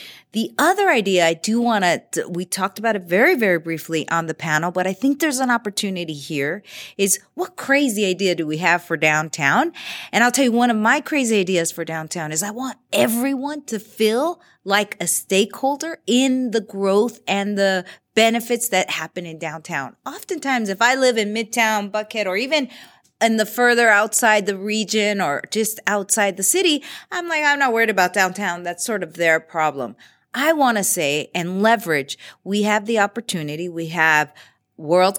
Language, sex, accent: English, female, American